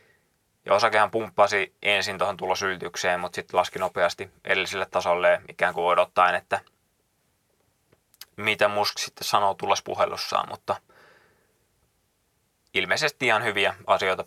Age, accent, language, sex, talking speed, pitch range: 20-39, native, Finnish, male, 115 wpm, 100-105 Hz